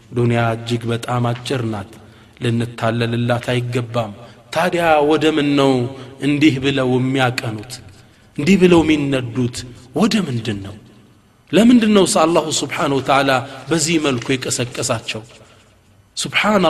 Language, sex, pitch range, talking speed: Amharic, male, 125-165 Hz, 110 wpm